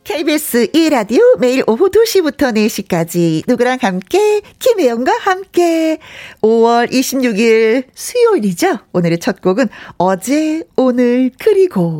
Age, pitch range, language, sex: 40-59, 190-290 Hz, Korean, female